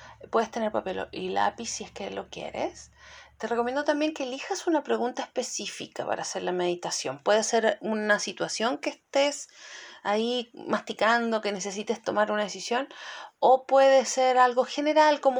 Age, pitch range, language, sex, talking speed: 30-49, 205-290 Hz, Spanish, female, 160 wpm